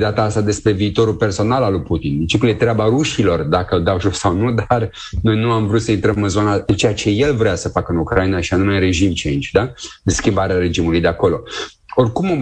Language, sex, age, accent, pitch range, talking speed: Romanian, male, 30-49, native, 95-115 Hz, 235 wpm